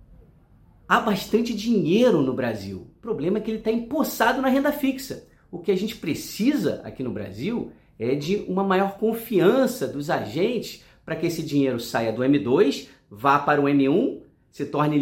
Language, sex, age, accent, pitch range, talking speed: Portuguese, male, 40-59, Brazilian, 140-210 Hz, 170 wpm